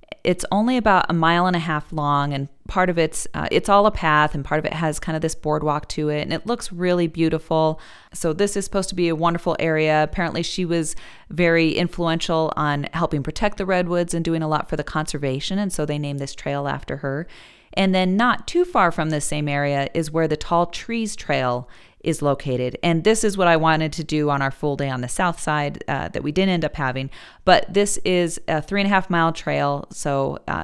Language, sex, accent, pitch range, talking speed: English, female, American, 150-180 Hz, 235 wpm